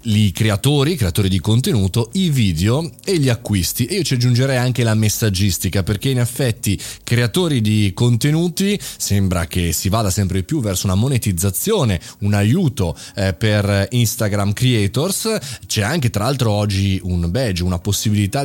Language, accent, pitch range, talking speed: Italian, native, 100-125 Hz, 155 wpm